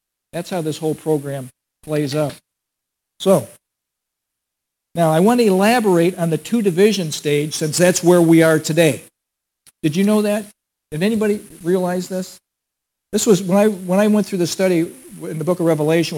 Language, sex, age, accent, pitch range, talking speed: English, male, 60-79, American, 165-205 Hz, 170 wpm